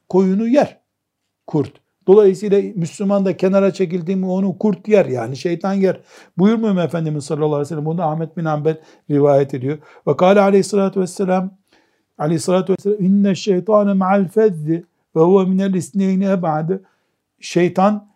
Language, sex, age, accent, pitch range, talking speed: Turkish, male, 60-79, native, 160-210 Hz, 140 wpm